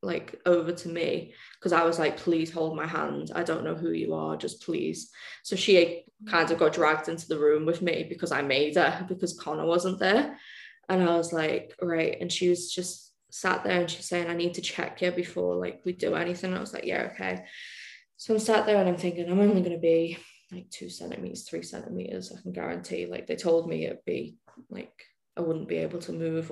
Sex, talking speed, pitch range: female, 235 wpm, 165-180 Hz